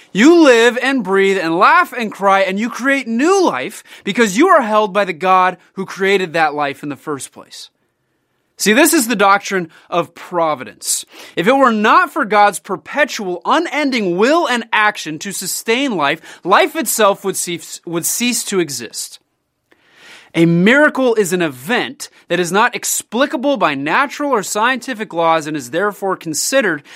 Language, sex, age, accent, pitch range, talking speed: English, male, 30-49, American, 155-235 Hz, 165 wpm